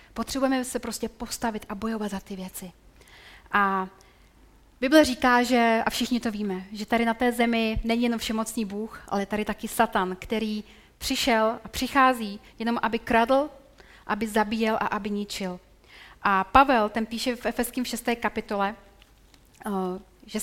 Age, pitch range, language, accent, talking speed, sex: 30-49, 205-250 Hz, Czech, native, 150 wpm, female